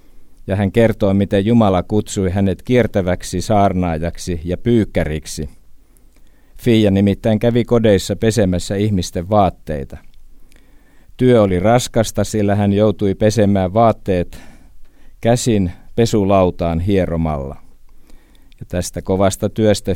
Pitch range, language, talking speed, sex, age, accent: 90-110 Hz, Finnish, 100 wpm, male, 50-69, native